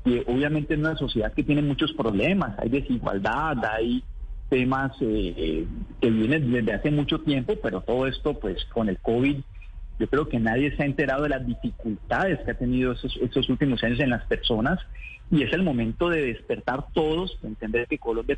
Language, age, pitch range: Spanish, 40-59, 120-145 Hz